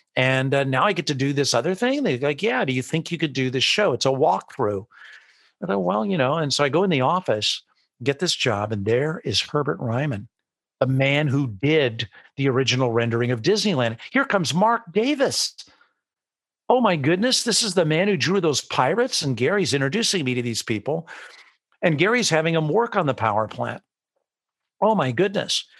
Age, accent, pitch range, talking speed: 50-69, American, 120-165 Hz, 200 wpm